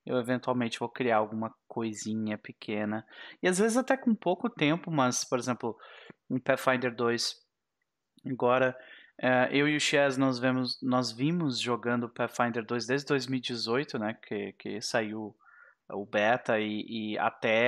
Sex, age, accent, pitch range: male, 20-39, Brazilian, 120-145 Hz